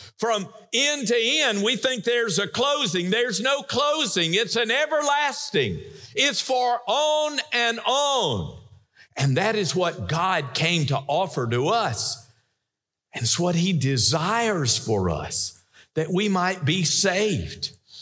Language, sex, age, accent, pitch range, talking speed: English, male, 50-69, American, 140-230 Hz, 140 wpm